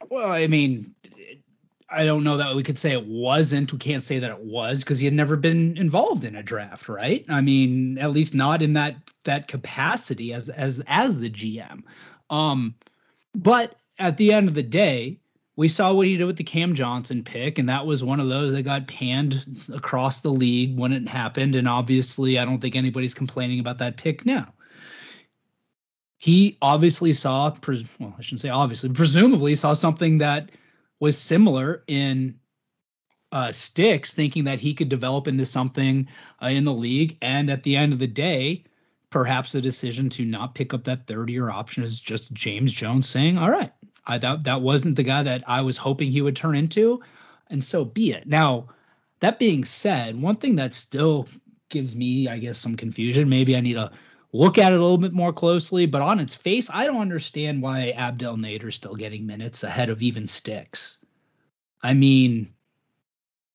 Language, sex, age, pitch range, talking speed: English, male, 30-49, 125-160 Hz, 190 wpm